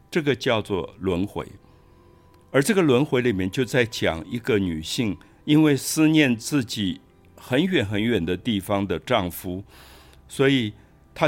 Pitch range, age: 90-120 Hz, 60-79